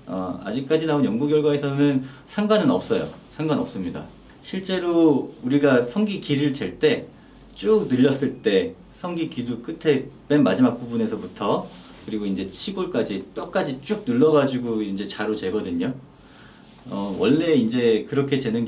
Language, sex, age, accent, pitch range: Korean, male, 40-59, native, 115-190 Hz